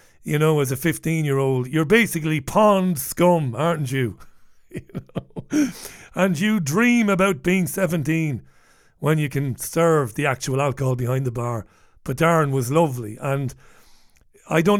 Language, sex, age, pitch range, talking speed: English, male, 60-79, 135-165 Hz, 140 wpm